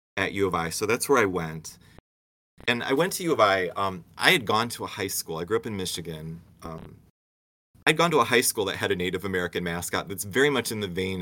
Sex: male